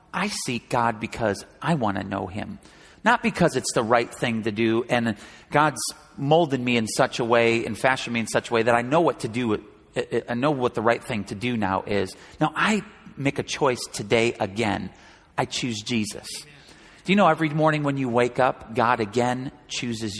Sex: male